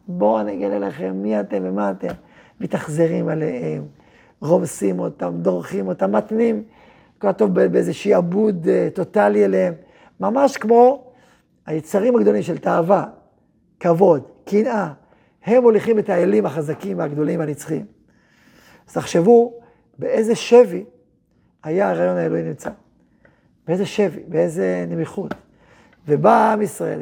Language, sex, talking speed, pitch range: Hebrew, male, 110 wpm, 155-215 Hz